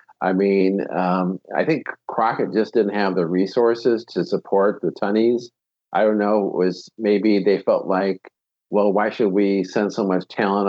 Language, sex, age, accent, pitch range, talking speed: English, male, 50-69, American, 90-110 Hz, 180 wpm